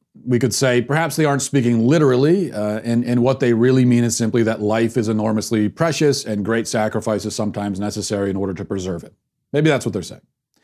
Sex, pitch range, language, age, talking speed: male, 115-150 Hz, English, 40-59, 215 wpm